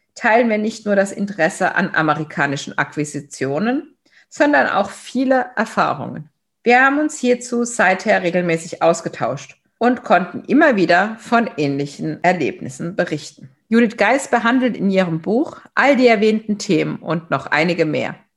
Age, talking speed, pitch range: 50-69, 135 wpm, 170-235 Hz